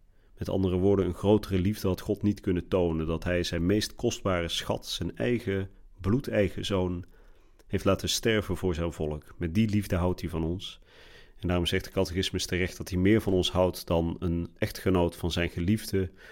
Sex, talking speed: male, 190 wpm